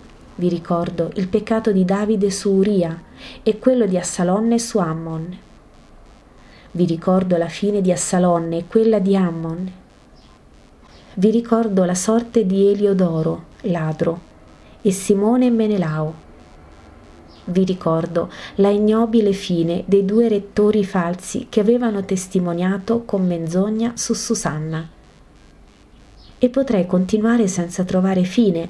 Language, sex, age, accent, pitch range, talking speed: Italian, female, 30-49, native, 165-205 Hz, 120 wpm